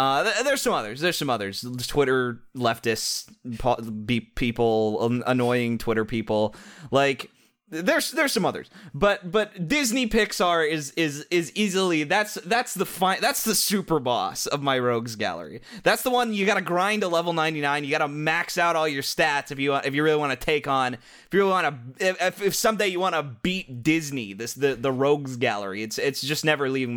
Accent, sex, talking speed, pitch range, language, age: American, male, 195 wpm, 125-180 Hz, English, 20-39